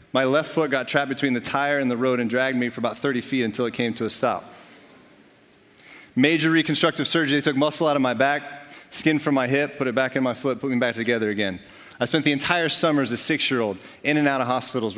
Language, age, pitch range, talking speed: English, 30-49, 120-140 Hz, 250 wpm